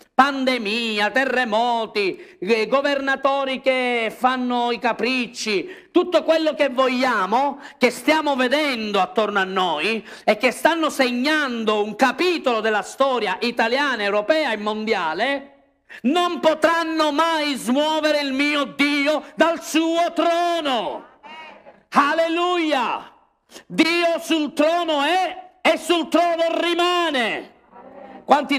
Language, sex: Italian, male